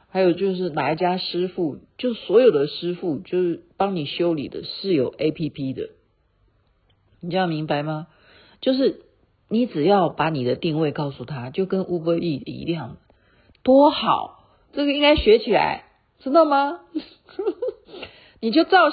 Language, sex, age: Chinese, female, 50-69